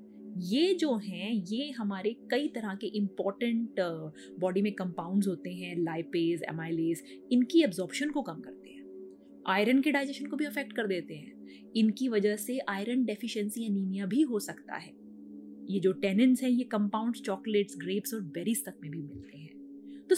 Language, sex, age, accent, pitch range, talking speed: Hindi, female, 20-39, native, 190-265 Hz, 170 wpm